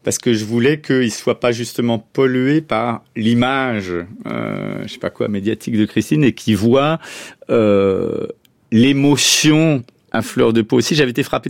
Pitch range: 110-140 Hz